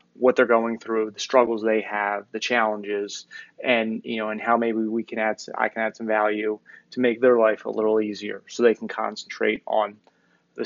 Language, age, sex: English, 20-39, male